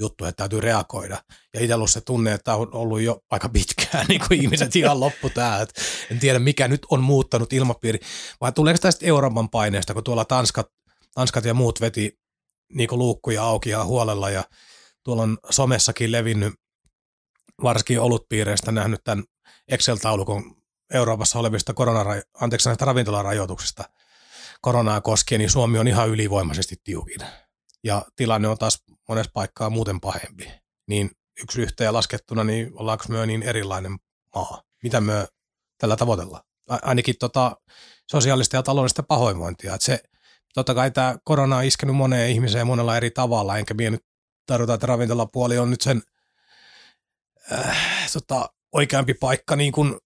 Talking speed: 155 wpm